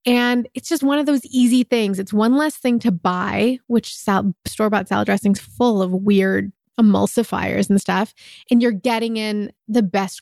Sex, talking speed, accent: female, 180 wpm, American